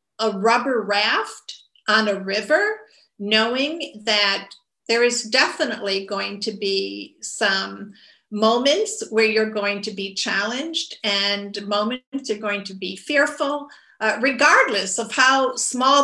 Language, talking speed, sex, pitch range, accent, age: English, 130 wpm, female, 215-290 Hz, American, 50-69